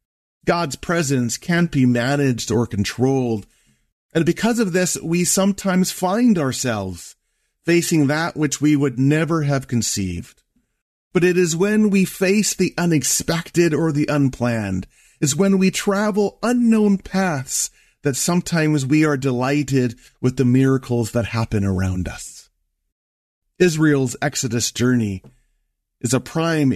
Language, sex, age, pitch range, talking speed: English, male, 40-59, 120-170 Hz, 130 wpm